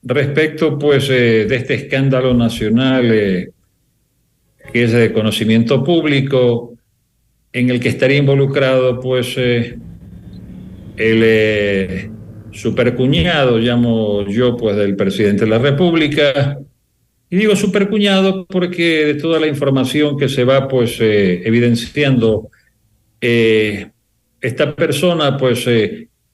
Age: 50-69